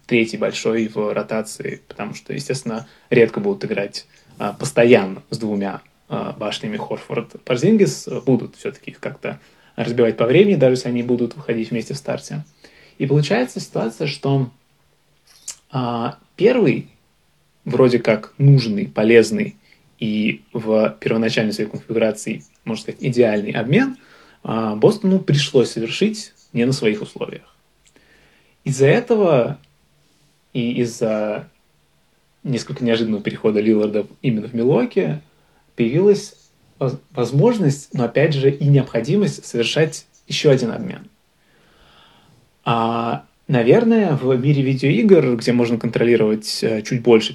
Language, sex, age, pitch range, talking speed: Russian, male, 20-39, 115-150 Hz, 110 wpm